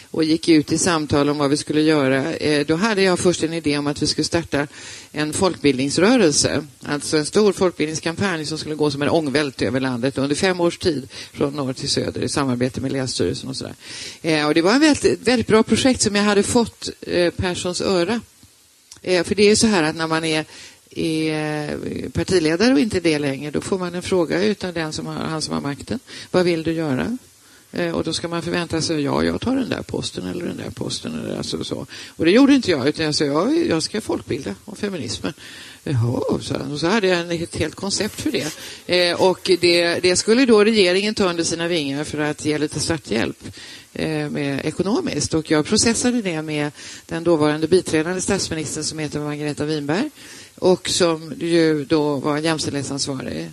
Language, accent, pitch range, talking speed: Swedish, native, 150-180 Hz, 195 wpm